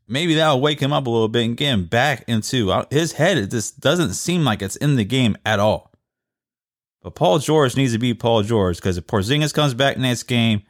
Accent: American